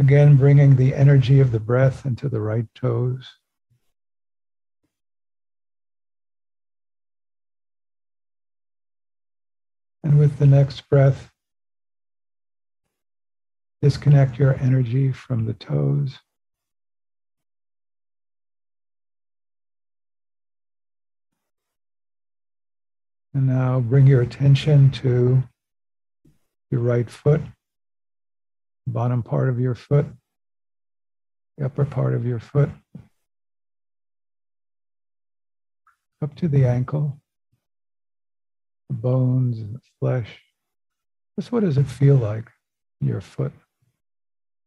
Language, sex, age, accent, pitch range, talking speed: English, male, 50-69, American, 100-130 Hz, 80 wpm